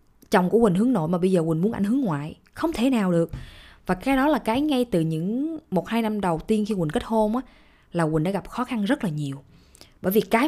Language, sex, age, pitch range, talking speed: Vietnamese, female, 20-39, 170-235 Hz, 270 wpm